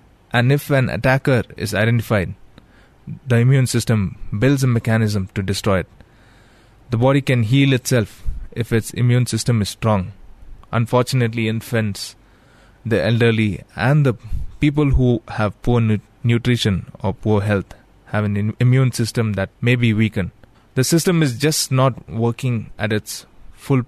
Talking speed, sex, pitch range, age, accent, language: 145 wpm, male, 105-125 Hz, 20-39, Indian, English